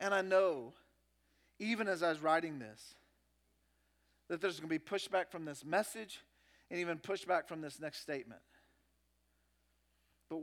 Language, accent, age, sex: English, American, 40-59, male